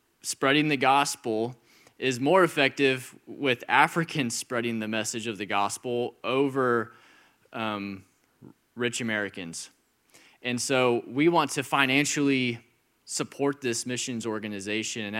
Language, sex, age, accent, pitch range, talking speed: English, male, 20-39, American, 120-145 Hz, 115 wpm